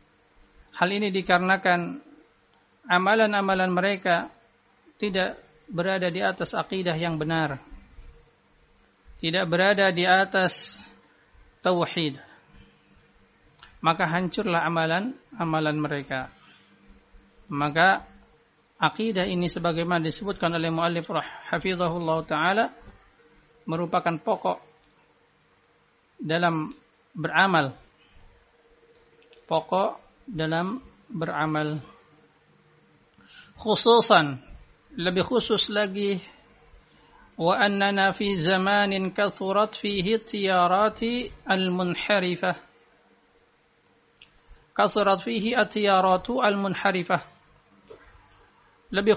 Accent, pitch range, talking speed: native, 165-210 Hz, 70 wpm